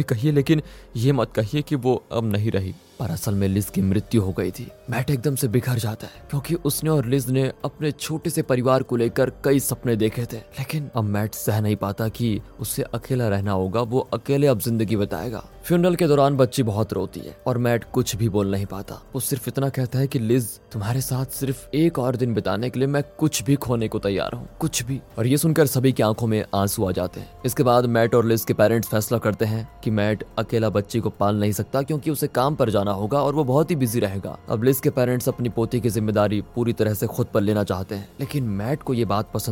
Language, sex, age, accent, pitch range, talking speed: Hindi, male, 20-39, native, 110-140 Hz, 210 wpm